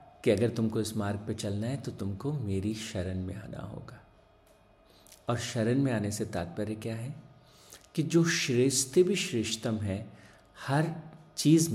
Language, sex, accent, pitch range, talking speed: Hindi, male, native, 105-130 Hz, 160 wpm